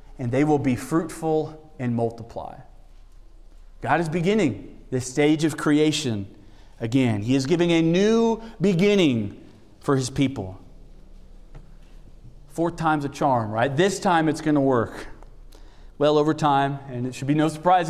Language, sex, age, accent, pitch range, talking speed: English, male, 40-59, American, 135-195 Hz, 150 wpm